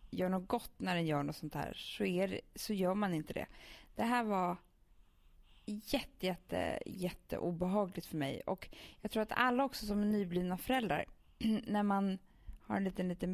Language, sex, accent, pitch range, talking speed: English, female, Norwegian, 160-220 Hz, 185 wpm